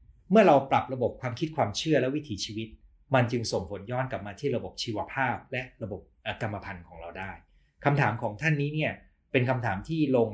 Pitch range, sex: 95-140 Hz, male